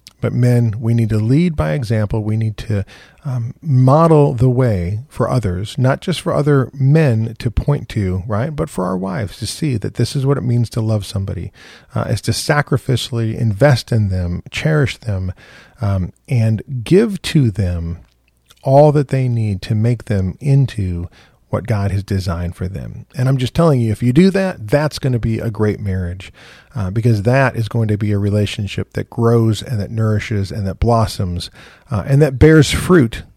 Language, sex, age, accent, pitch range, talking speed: English, male, 40-59, American, 105-135 Hz, 190 wpm